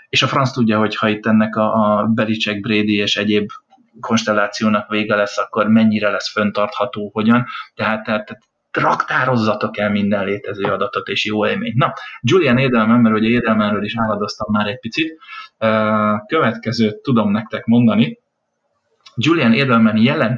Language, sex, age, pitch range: Hungarian, male, 30-49, 105-120 Hz